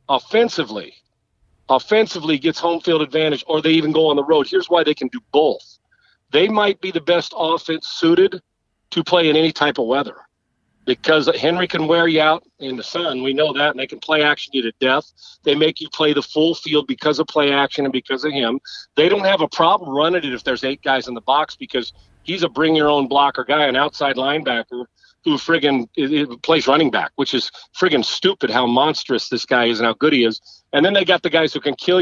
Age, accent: 40-59, American